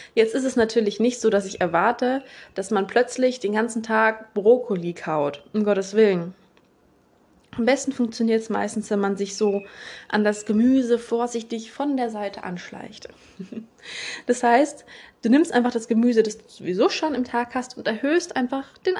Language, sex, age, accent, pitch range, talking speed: German, female, 20-39, German, 210-270 Hz, 175 wpm